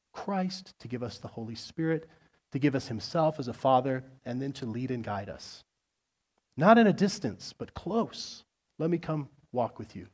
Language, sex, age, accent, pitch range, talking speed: English, male, 30-49, American, 115-160 Hz, 195 wpm